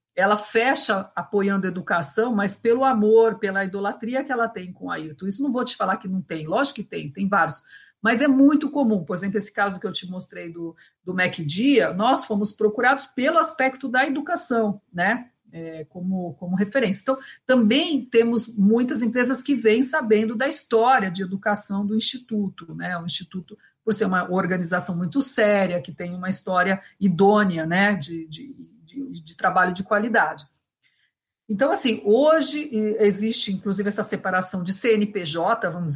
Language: Portuguese